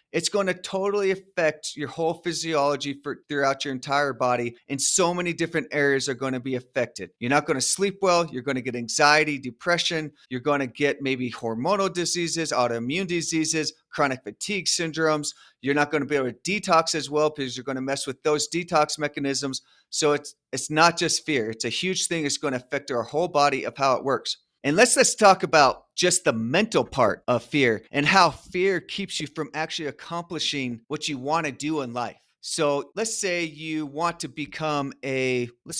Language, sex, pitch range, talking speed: English, male, 135-170 Hz, 205 wpm